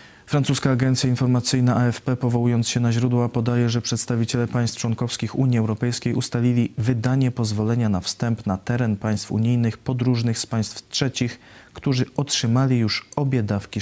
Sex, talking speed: male, 145 wpm